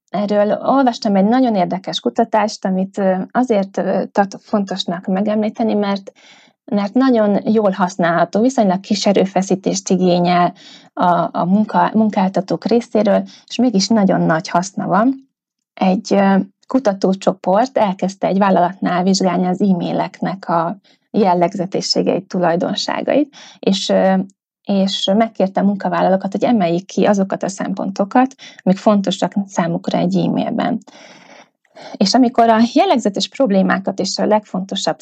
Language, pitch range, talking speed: Hungarian, 185-230 Hz, 115 wpm